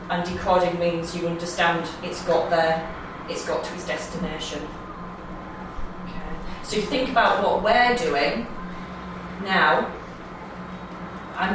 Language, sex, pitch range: English, female, 175-205 Hz